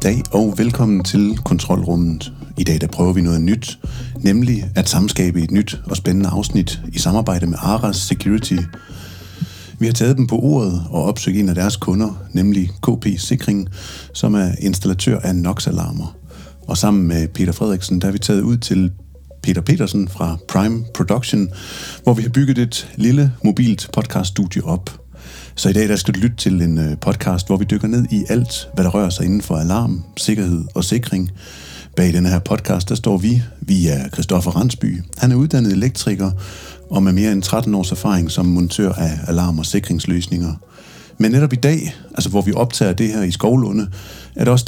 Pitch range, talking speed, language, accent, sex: 90-110 Hz, 185 wpm, Danish, native, male